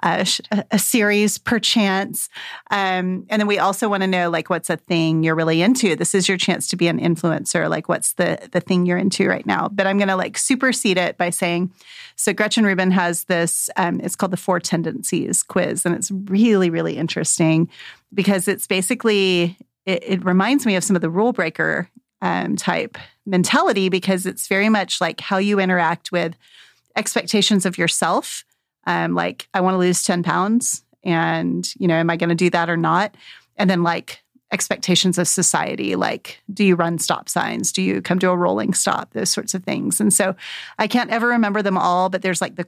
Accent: American